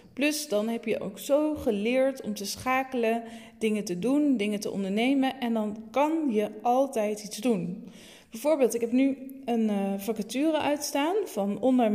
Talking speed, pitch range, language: 165 wpm, 215-265 Hz, Dutch